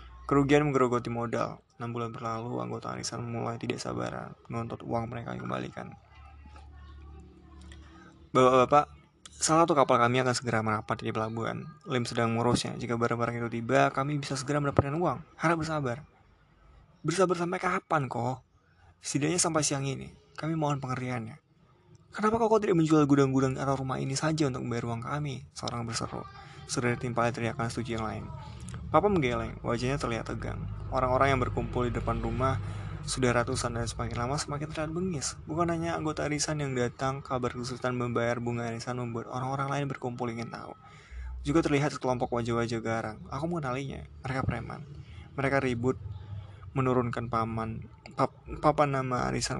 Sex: male